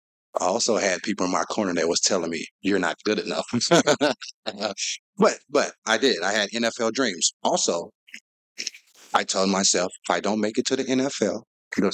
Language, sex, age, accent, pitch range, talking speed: English, male, 30-49, American, 90-125 Hz, 180 wpm